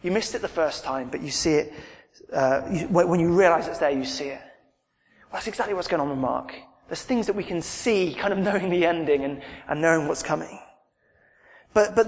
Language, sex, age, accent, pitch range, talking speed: English, male, 20-39, British, 155-200 Hz, 230 wpm